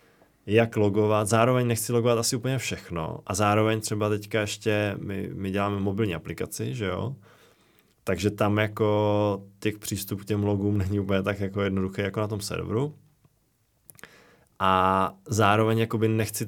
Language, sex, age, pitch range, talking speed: Czech, male, 20-39, 95-110 Hz, 145 wpm